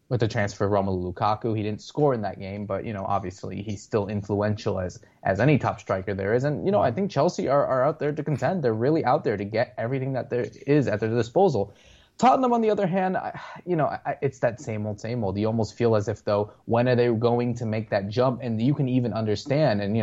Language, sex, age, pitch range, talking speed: English, male, 20-39, 105-135 Hz, 260 wpm